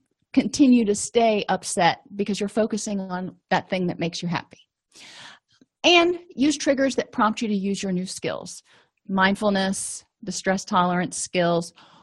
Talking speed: 150 wpm